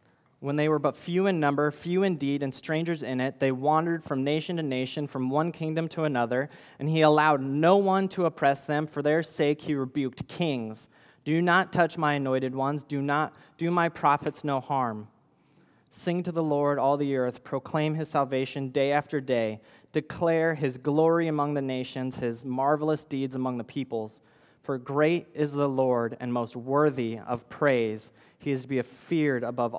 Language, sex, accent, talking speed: English, male, American, 185 wpm